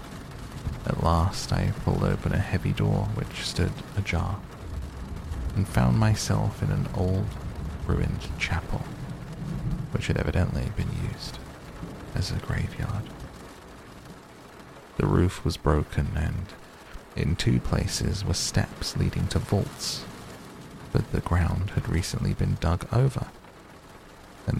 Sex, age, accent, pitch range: male, 30-49, British, 85-110 Hz